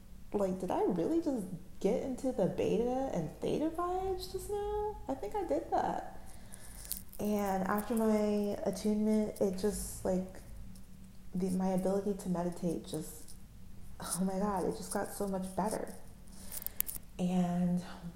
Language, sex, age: English, female, 20-39